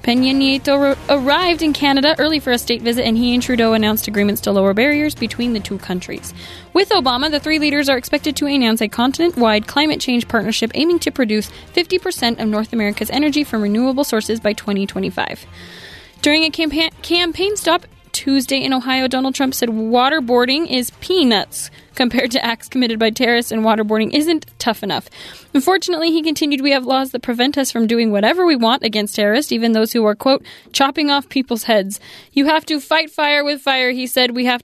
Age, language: 10-29, English